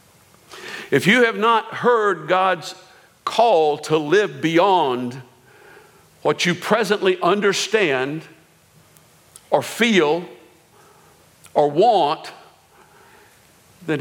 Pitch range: 150-230 Hz